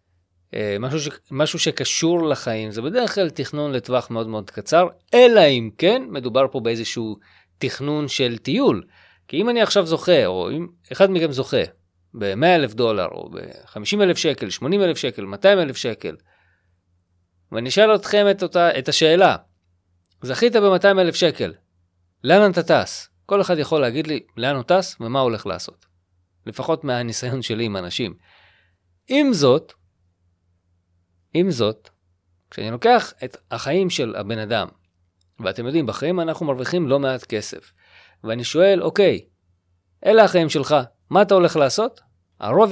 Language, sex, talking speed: Hebrew, male, 150 wpm